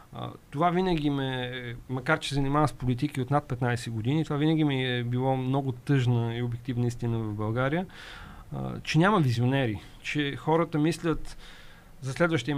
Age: 40-59